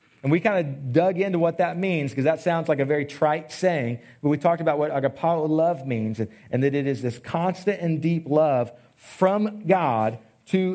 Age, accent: 40-59, American